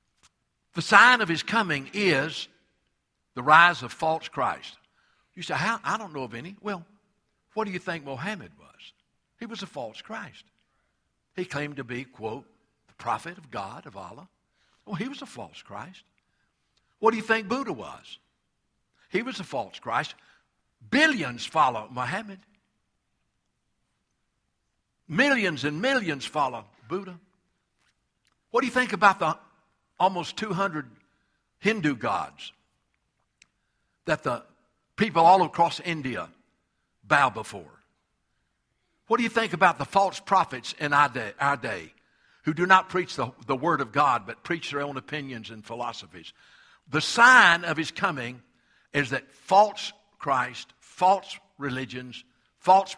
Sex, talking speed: male, 140 wpm